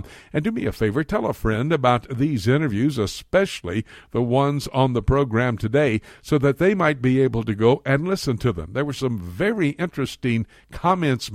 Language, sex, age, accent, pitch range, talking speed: English, male, 60-79, American, 110-145 Hz, 190 wpm